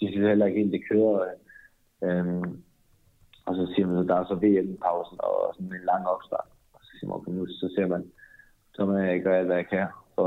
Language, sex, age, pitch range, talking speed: Danish, male, 30-49, 90-105 Hz, 220 wpm